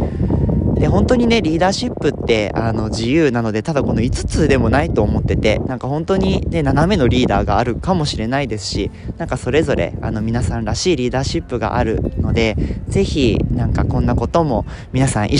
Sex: male